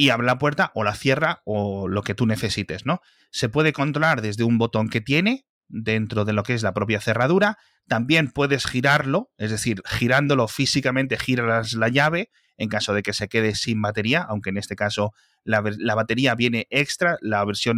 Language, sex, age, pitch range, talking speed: Spanish, male, 30-49, 105-140 Hz, 195 wpm